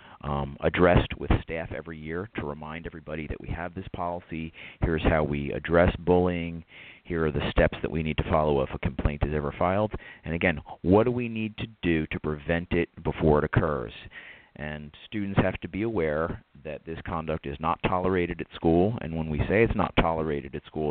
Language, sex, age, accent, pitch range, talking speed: English, male, 40-59, American, 75-90 Hz, 205 wpm